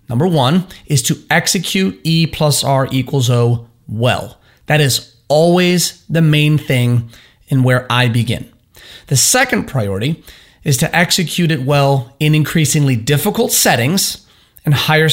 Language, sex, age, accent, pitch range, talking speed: English, male, 30-49, American, 125-170 Hz, 140 wpm